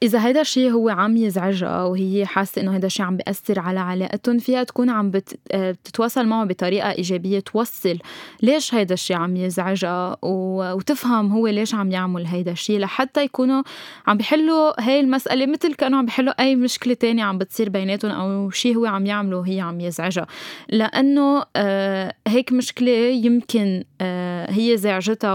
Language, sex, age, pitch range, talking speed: Arabic, female, 20-39, 190-235 Hz, 155 wpm